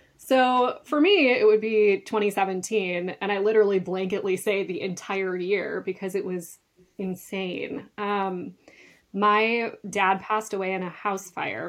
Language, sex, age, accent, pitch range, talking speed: English, female, 20-39, American, 180-210 Hz, 145 wpm